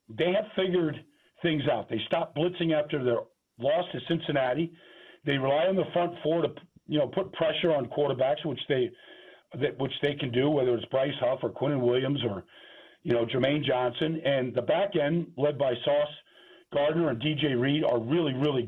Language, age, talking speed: English, 50-69, 190 wpm